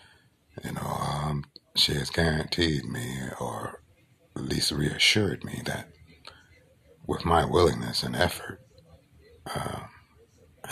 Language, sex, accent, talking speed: English, male, American, 105 wpm